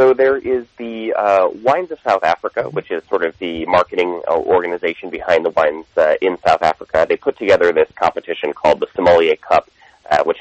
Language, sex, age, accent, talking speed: English, male, 30-49, American, 195 wpm